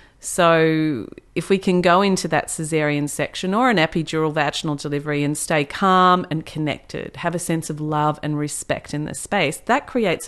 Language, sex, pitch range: English, female, 140-165 Hz